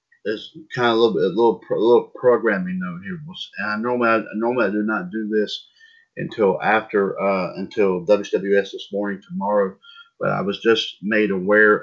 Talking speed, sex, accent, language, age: 185 wpm, male, American, English, 40-59